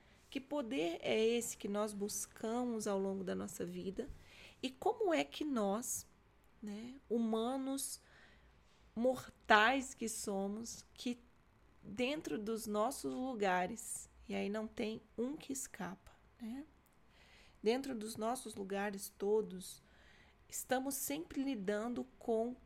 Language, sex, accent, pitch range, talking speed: Portuguese, female, Brazilian, 205-245 Hz, 115 wpm